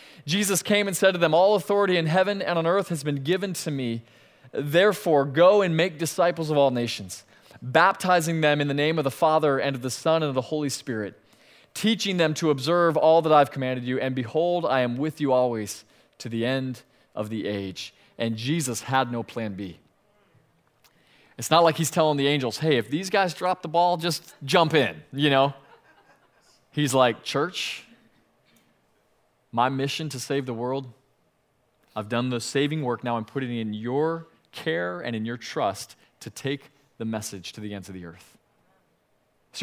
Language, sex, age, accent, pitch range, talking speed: English, male, 20-39, American, 120-160 Hz, 190 wpm